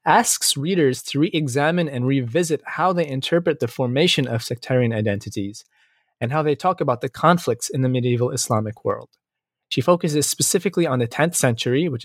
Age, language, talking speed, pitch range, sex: 20-39, English, 170 wpm, 125-155 Hz, male